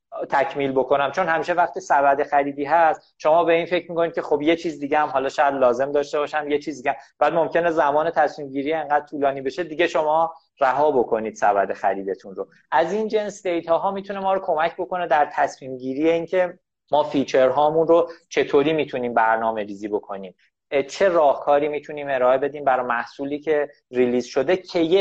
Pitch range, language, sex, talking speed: 135-165 Hz, Persian, male, 185 wpm